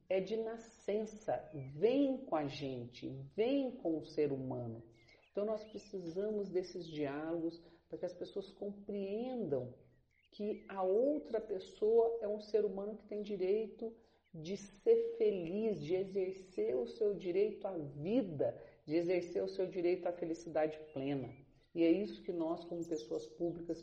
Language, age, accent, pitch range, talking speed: Portuguese, 50-69, Brazilian, 160-205 Hz, 150 wpm